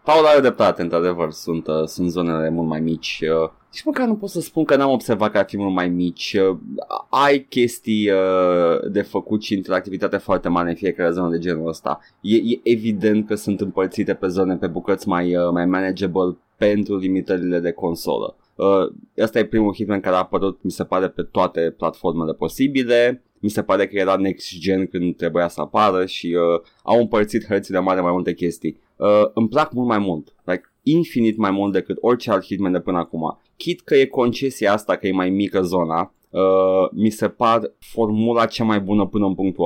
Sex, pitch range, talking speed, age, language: male, 90-120 Hz, 190 wpm, 20-39, Romanian